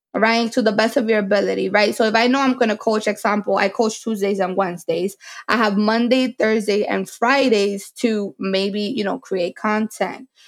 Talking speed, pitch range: 190 wpm, 200-235 Hz